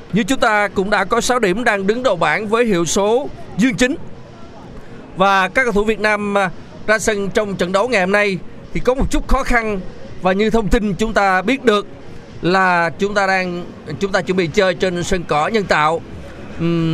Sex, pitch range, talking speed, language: male, 190-235 Hz, 215 wpm, Vietnamese